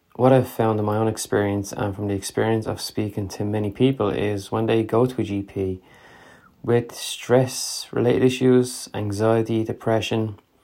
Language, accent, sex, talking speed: English, Irish, male, 165 wpm